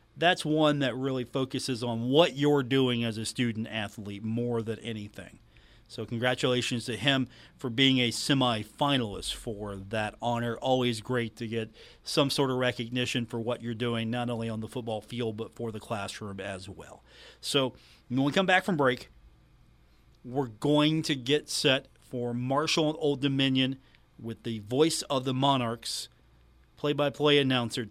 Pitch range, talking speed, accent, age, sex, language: 115-140 Hz, 165 wpm, American, 40-59, male, English